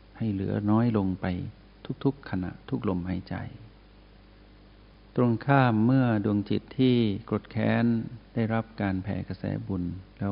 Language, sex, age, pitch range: Thai, male, 60-79, 95-110 Hz